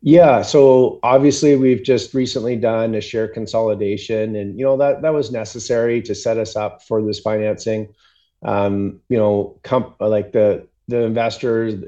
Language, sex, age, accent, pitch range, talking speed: English, male, 30-49, American, 100-115 Hz, 160 wpm